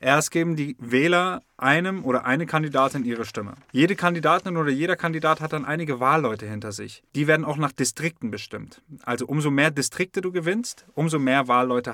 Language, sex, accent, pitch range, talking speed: German, male, German, 125-170 Hz, 180 wpm